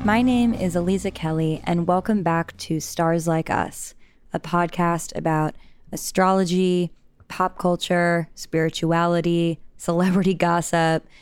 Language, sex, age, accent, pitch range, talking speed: English, female, 10-29, American, 165-190 Hz, 110 wpm